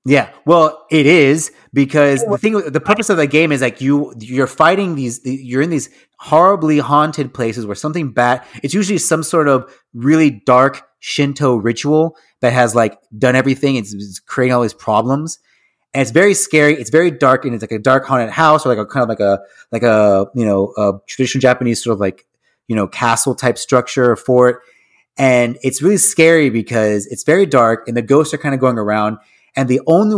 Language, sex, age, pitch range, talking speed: English, male, 30-49, 120-150 Hz, 205 wpm